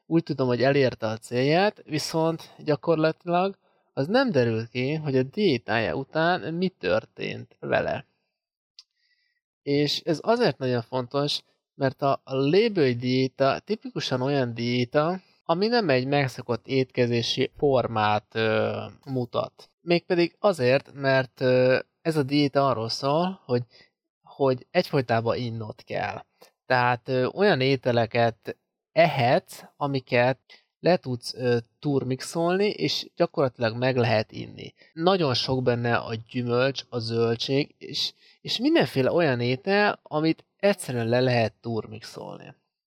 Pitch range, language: 125-170 Hz, Hungarian